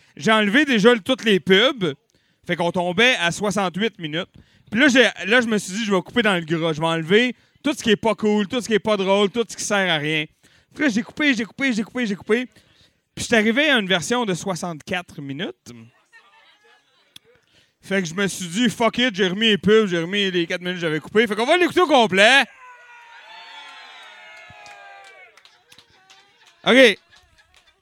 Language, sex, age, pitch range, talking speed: French, male, 30-49, 175-235 Hz, 200 wpm